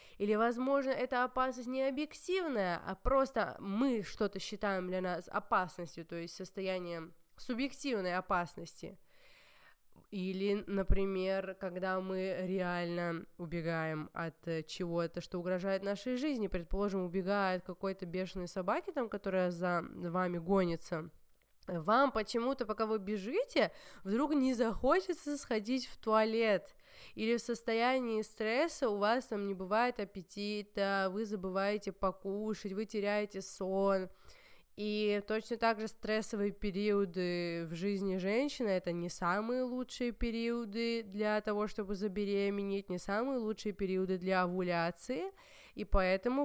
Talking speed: 120 wpm